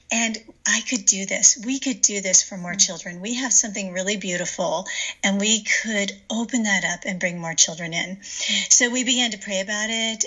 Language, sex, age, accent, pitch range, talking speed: English, female, 40-59, American, 190-230 Hz, 205 wpm